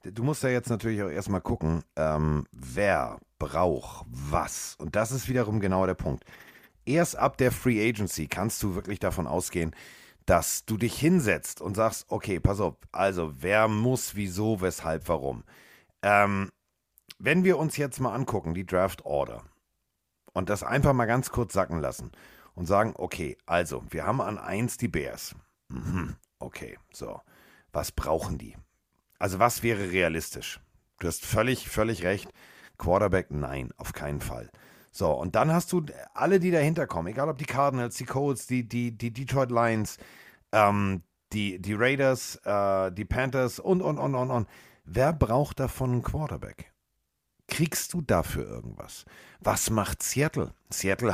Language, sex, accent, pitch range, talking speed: German, male, German, 95-130 Hz, 160 wpm